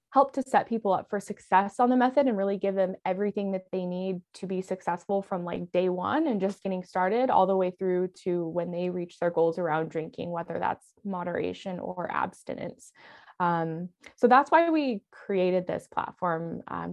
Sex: female